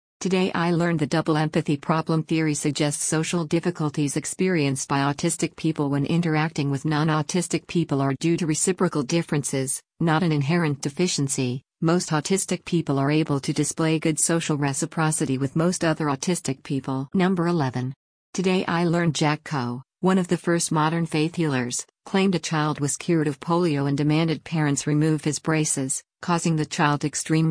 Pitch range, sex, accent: 145-170 Hz, female, American